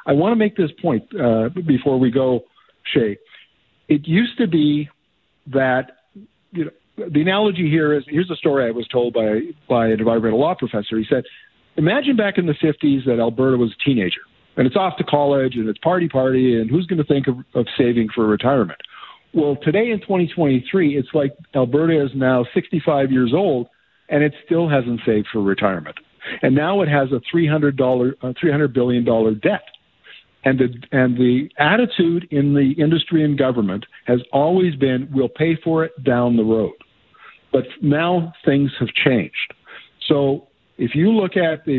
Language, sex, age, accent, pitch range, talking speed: English, male, 50-69, American, 120-160 Hz, 175 wpm